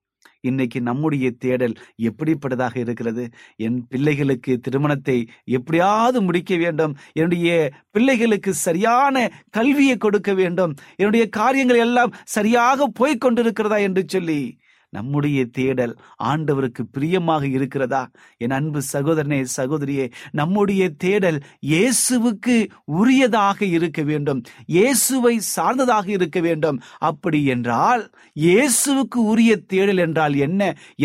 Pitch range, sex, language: 125-185 Hz, male, Tamil